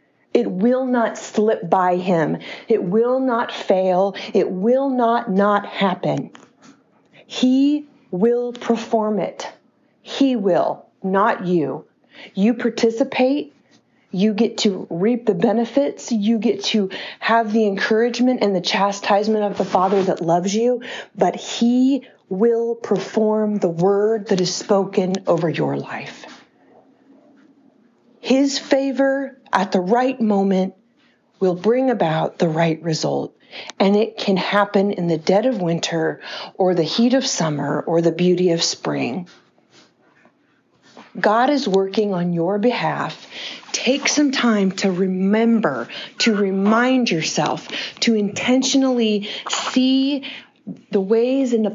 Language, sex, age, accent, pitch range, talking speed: English, female, 40-59, American, 195-245 Hz, 130 wpm